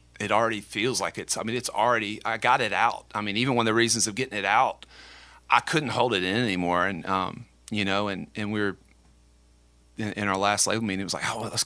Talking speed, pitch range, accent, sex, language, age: 245 wpm, 95-115 Hz, American, male, English, 30-49